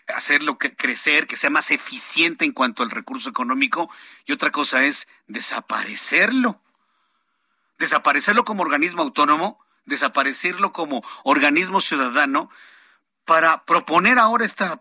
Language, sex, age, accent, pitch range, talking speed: Spanish, male, 50-69, Mexican, 165-260 Hz, 115 wpm